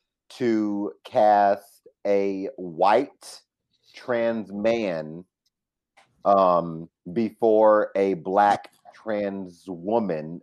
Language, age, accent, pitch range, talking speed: English, 30-49, American, 95-115 Hz, 70 wpm